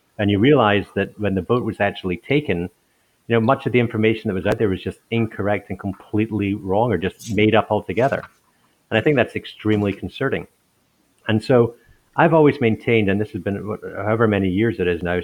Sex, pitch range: male, 95-115 Hz